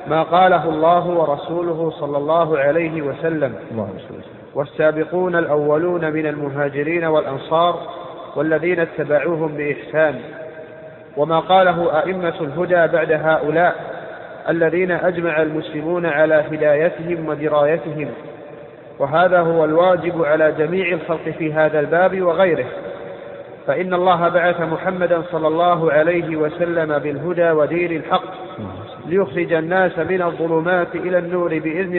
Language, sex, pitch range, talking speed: Arabic, male, 155-180 Hz, 105 wpm